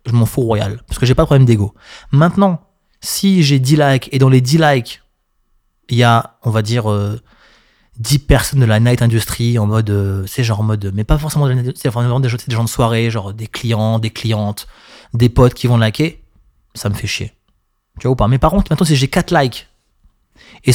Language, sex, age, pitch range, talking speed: French, male, 20-39, 115-145 Hz, 235 wpm